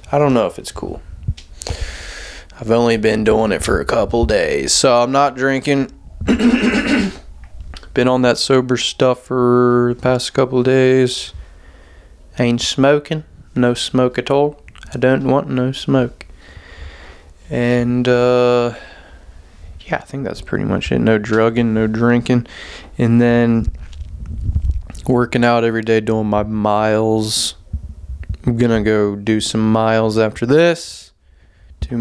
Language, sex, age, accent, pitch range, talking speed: English, male, 20-39, American, 85-125 Hz, 135 wpm